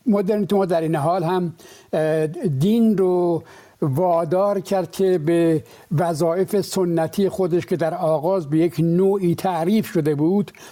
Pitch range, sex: 160-190 Hz, male